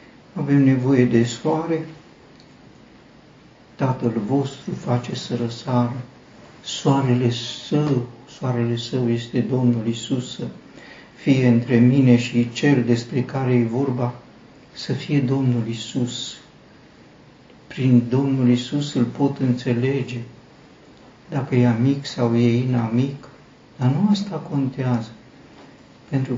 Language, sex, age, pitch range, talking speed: Romanian, male, 60-79, 120-135 Hz, 105 wpm